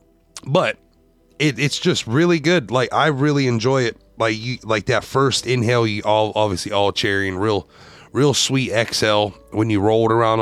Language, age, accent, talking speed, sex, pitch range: English, 30-49, American, 185 wpm, male, 95-115 Hz